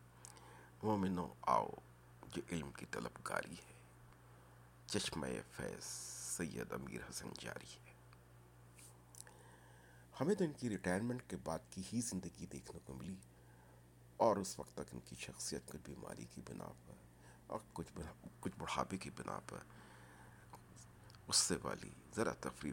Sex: male